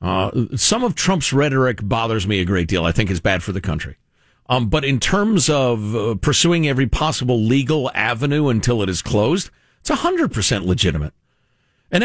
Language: English